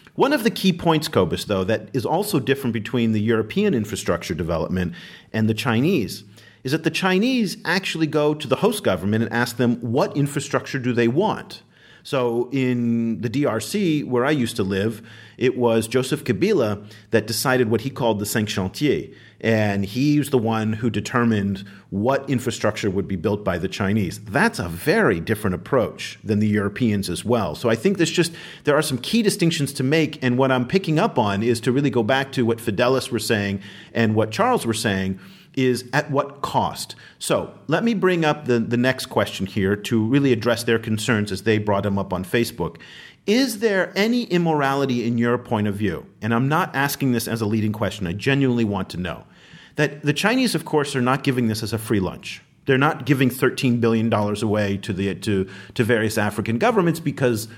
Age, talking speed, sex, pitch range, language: 40-59, 200 wpm, male, 105-140 Hz, English